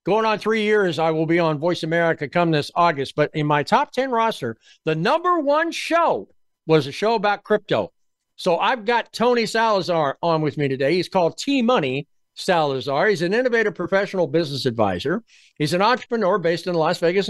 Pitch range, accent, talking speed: 160-225 Hz, American, 185 wpm